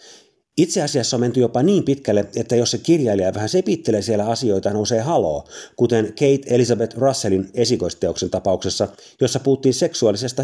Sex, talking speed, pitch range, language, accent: male, 150 wpm, 105-140 Hz, Finnish, native